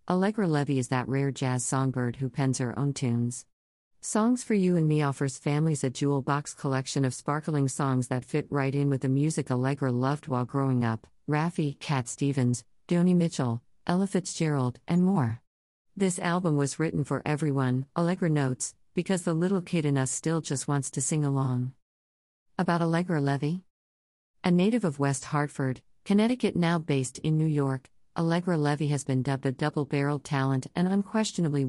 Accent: American